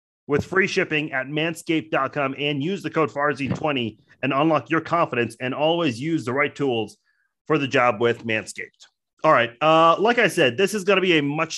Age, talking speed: 30-49, 200 wpm